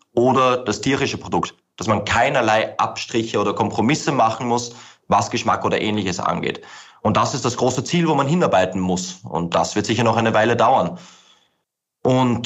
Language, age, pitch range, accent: German, 20-39, 105-130 Hz, German